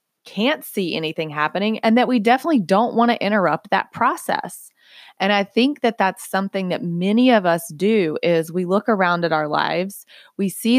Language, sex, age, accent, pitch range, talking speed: English, female, 20-39, American, 165-210 Hz, 190 wpm